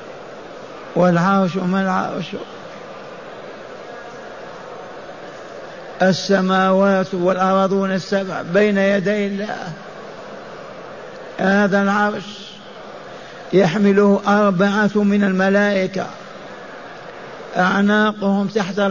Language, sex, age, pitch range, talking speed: Arabic, male, 50-69, 180-200 Hz, 50 wpm